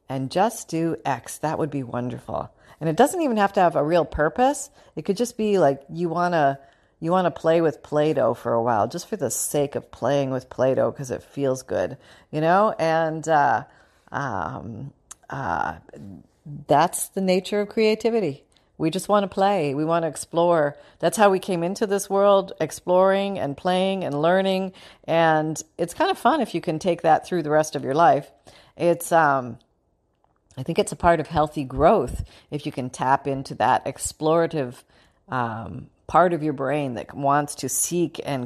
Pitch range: 140-175 Hz